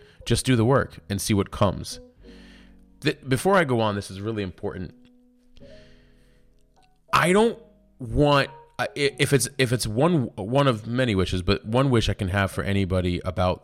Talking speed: 165 wpm